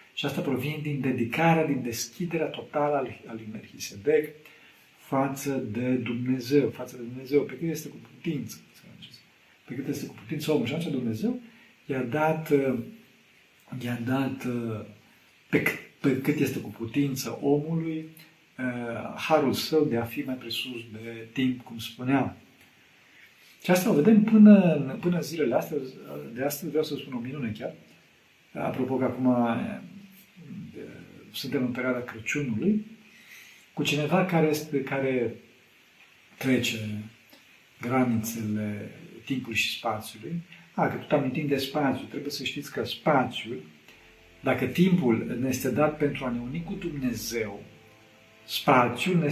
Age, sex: 50-69, male